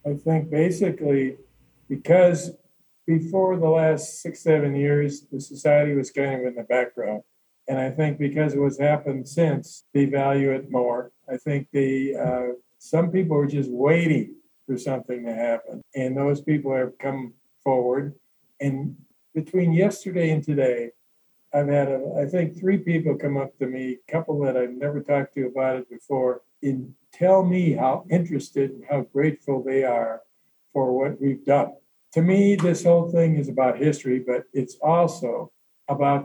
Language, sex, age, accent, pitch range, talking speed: English, male, 50-69, American, 130-155 Hz, 165 wpm